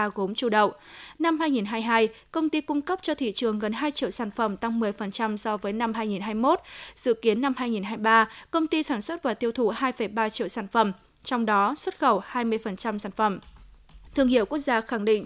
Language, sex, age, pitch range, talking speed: Vietnamese, female, 20-39, 220-280 Hz, 200 wpm